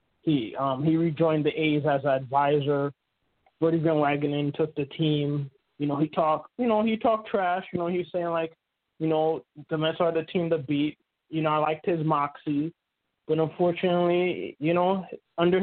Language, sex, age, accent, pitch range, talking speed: English, male, 20-39, American, 145-165 Hz, 190 wpm